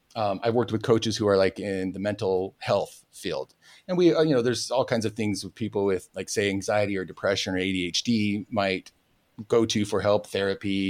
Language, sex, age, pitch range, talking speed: English, male, 30-49, 100-125 Hz, 210 wpm